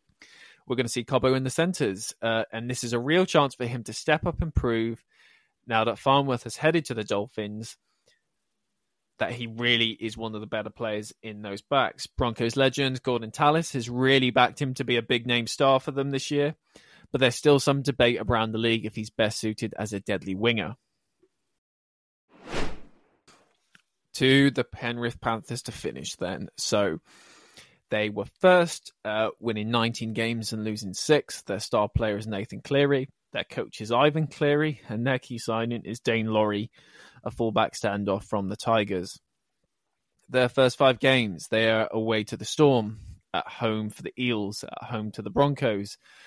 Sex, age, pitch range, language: male, 20-39, 105-130 Hz, English